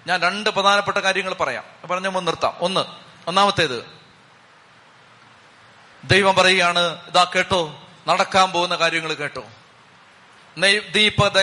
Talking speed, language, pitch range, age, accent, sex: 100 wpm, Malayalam, 175-225 Hz, 30-49, native, male